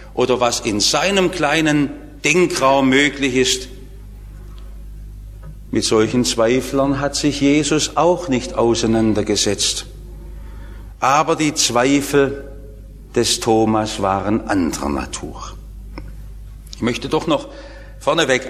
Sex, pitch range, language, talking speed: male, 100-150 Hz, English, 95 wpm